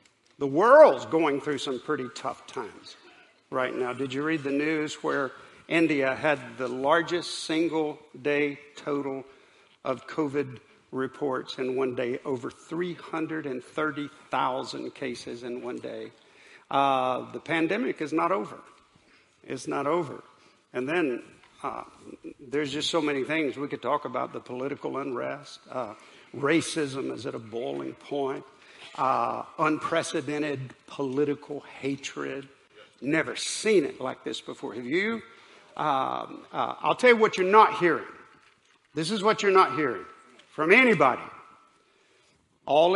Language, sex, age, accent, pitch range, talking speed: English, male, 50-69, American, 135-170 Hz, 135 wpm